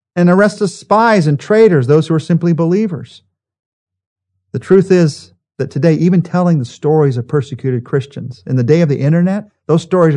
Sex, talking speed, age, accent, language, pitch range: male, 185 wpm, 50-69, American, English, 110-165 Hz